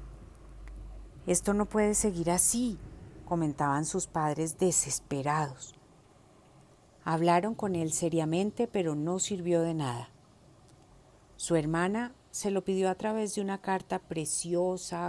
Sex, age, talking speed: female, 40-59, 115 wpm